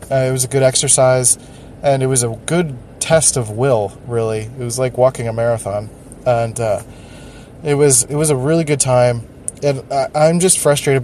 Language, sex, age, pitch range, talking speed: English, male, 20-39, 125-145 Hz, 195 wpm